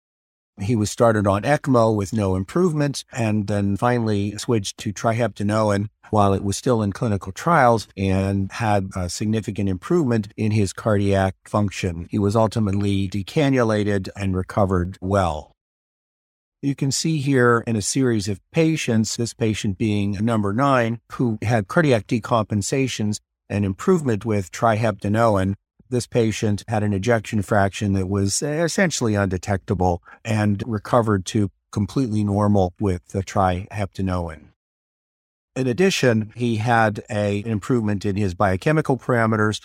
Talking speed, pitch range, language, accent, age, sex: 130 wpm, 100-120 Hz, English, American, 50-69, male